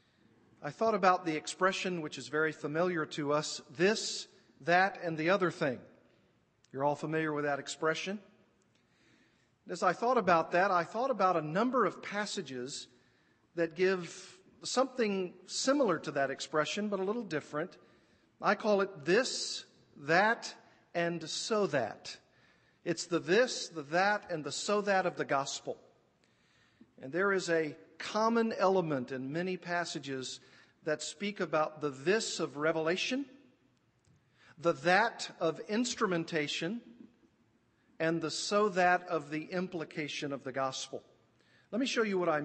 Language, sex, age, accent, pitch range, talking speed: English, male, 50-69, American, 150-195 Hz, 145 wpm